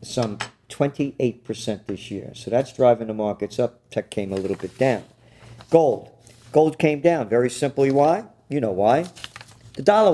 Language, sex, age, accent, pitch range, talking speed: English, male, 50-69, American, 120-165 Hz, 165 wpm